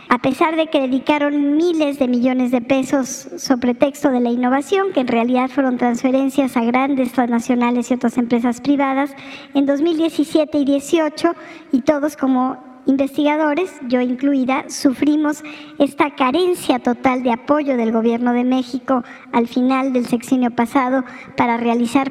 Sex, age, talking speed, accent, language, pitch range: male, 50-69, 145 wpm, Mexican, Spanish, 245-280 Hz